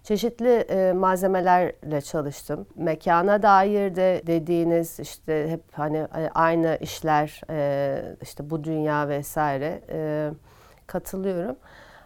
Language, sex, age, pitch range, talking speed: Turkish, female, 40-59, 155-190 Hz, 85 wpm